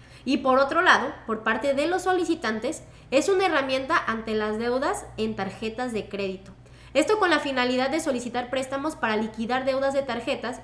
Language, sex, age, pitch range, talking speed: Spanish, female, 20-39, 220-300 Hz, 175 wpm